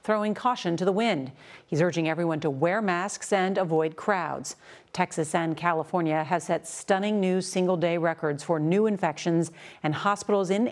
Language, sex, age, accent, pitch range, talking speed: English, female, 40-59, American, 160-200 Hz, 170 wpm